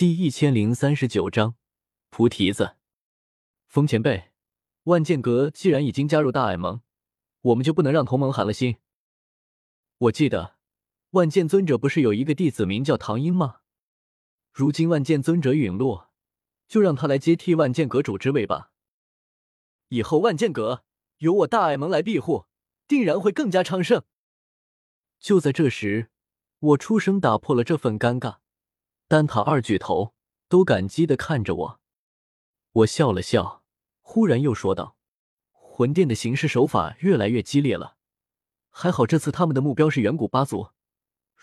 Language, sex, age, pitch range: Chinese, male, 20-39, 110-160 Hz